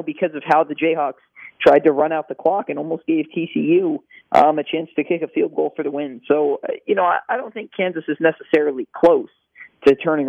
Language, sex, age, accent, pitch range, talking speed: English, male, 40-59, American, 140-175 Hz, 220 wpm